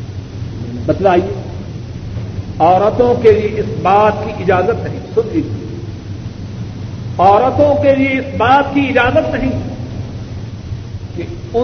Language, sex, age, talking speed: Urdu, male, 50-69, 100 wpm